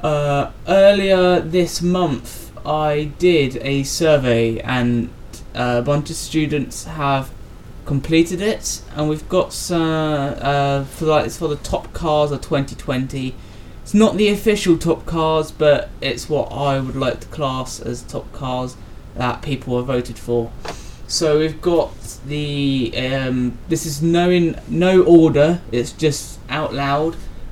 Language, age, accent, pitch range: English, 20-39, British, 120-160 Hz